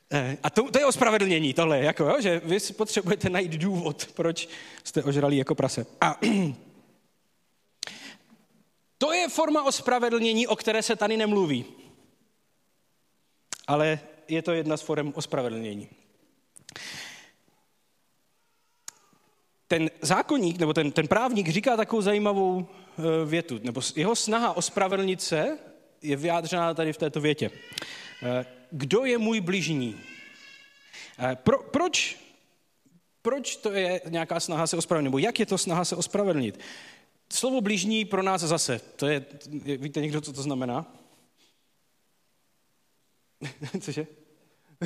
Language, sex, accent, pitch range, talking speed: Czech, male, native, 145-210 Hz, 120 wpm